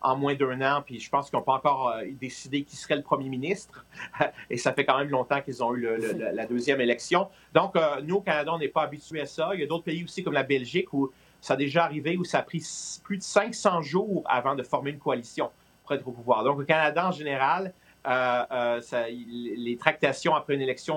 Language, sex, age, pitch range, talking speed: French, male, 40-59, 130-160 Hz, 240 wpm